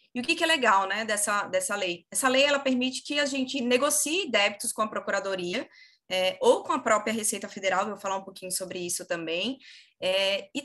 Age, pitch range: 20-39, 200-265 Hz